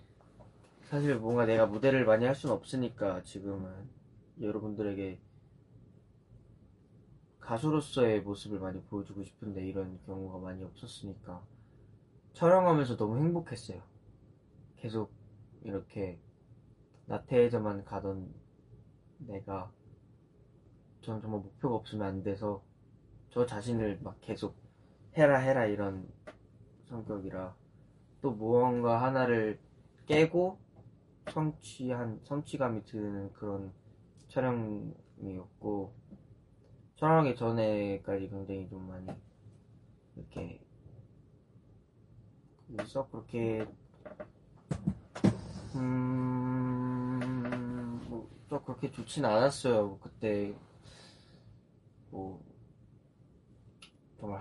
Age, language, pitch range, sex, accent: 20-39, Korean, 100-130 Hz, male, native